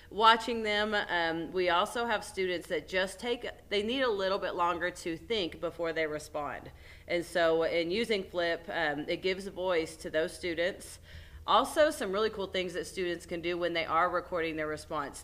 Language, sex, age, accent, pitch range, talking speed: English, female, 30-49, American, 160-190 Hz, 195 wpm